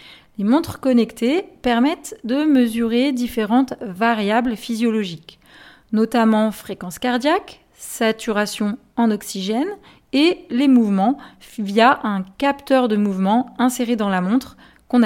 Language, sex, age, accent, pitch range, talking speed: French, female, 30-49, French, 210-265 Hz, 110 wpm